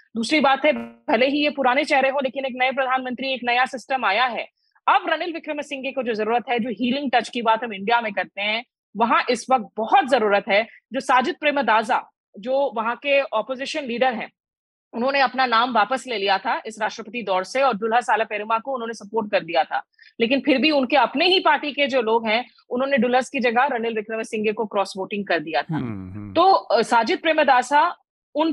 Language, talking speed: Hindi, 210 wpm